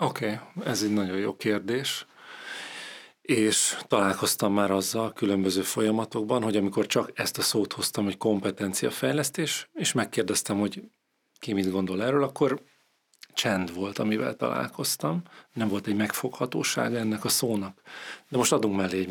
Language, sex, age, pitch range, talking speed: Hungarian, male, 40-59, 105-125 Hz, 140 wpm